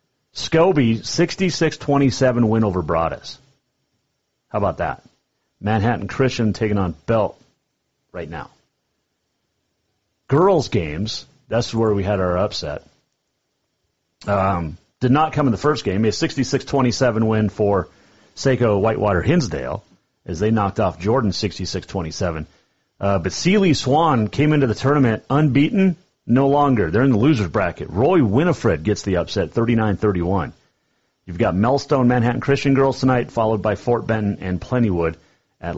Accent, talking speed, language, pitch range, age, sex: American, 150 wpm, English, 90-135 Hz, 40-59, male